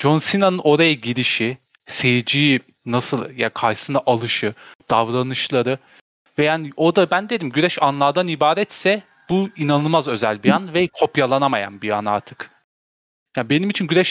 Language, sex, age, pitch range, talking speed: Turkish, male, 30-49, 125-175 Hz, 140 wpm